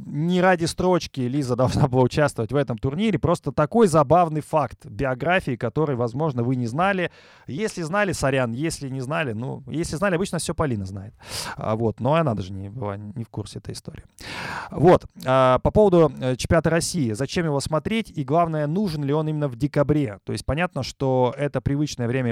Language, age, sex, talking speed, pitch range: Russian, 20-39, male, 180 wpm, 115-155 Hz